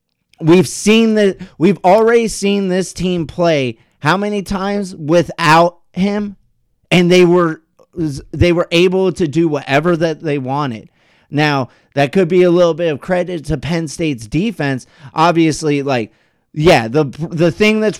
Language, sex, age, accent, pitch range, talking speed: English, male, 30-49, American, 140-180 Hz, 155 wpm